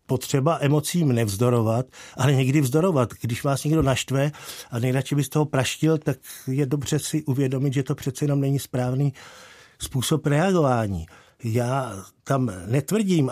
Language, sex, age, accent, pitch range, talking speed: Czech, male, 50-69, native, 130-165 Hz, 140 wpm